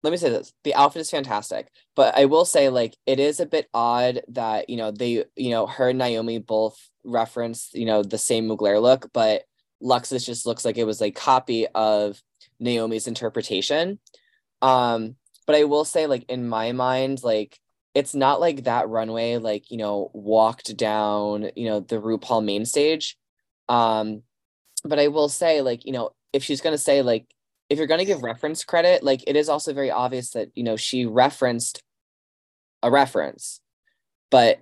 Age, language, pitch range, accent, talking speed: 10-29, English, 115-140 Hz, American, 185 wpm